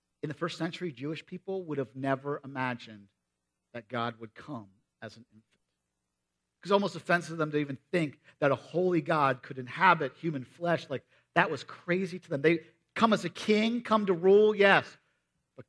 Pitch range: 115-175 Hz